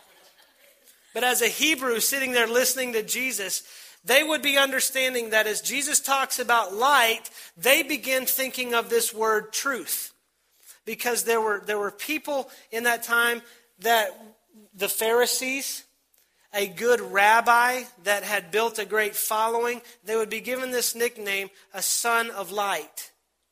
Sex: male